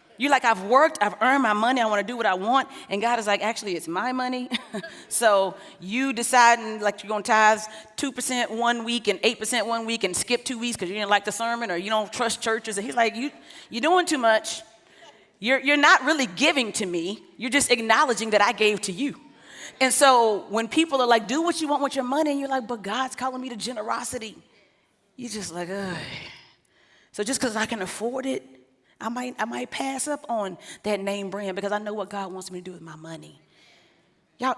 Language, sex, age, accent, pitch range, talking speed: English, female, 30-49, American, 205-270 Hz, 225 wpm